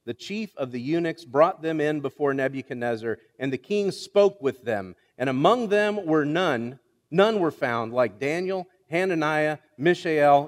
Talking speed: 160 wpm